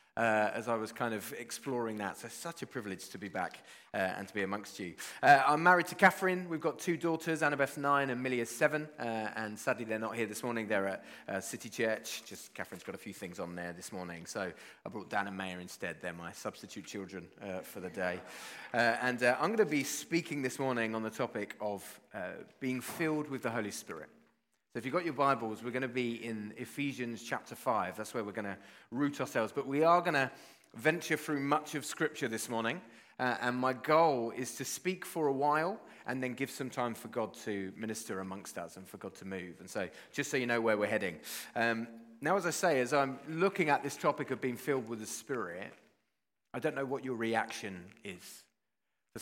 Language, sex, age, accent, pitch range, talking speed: English, male, 30-49, British, 110-145 Hz, 230 wpm